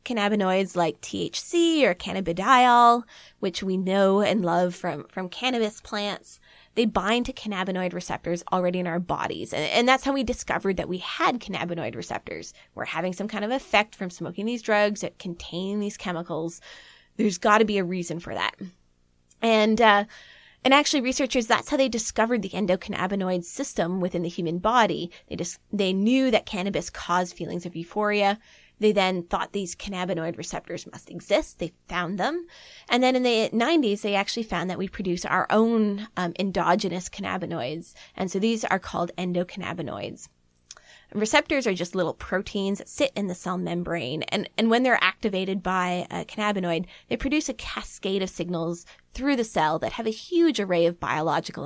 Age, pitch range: 20-39, 175-225 Hz